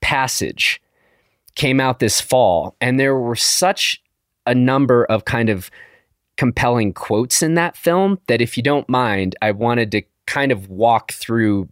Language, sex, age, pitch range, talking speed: English, male, 30-49, 100-145 Hz, 160 wpm